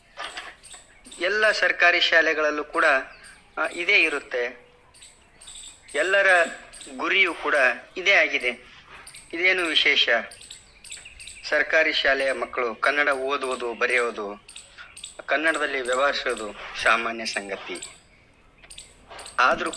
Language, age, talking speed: Kannada, 30-49, 75 wpm